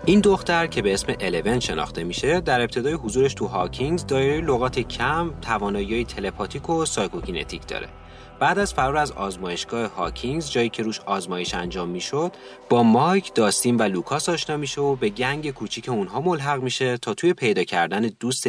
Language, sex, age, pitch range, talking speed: Persian, male, 30-49, 110-165 Hz, 170 wpm